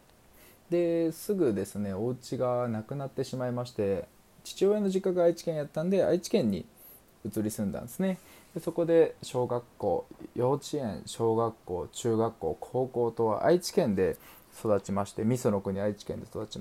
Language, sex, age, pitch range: Japanese, male, 20-39, 110-170 Hz